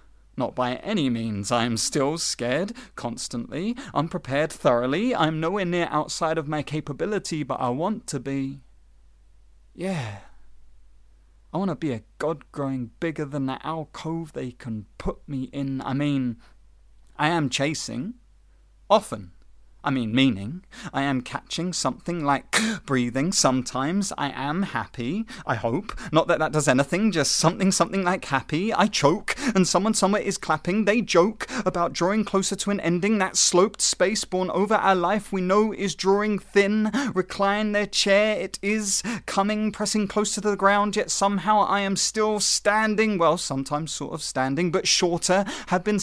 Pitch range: 145-205 Hz